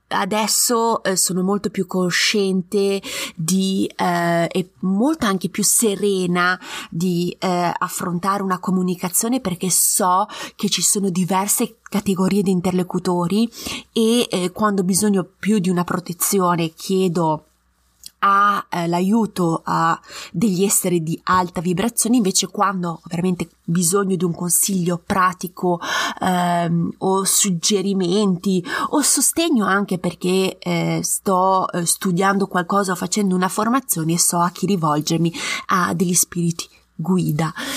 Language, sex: Italian, female